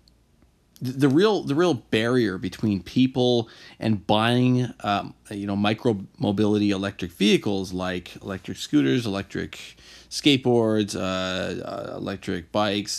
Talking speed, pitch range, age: 110 wpm, 100-130 Hz, 30-49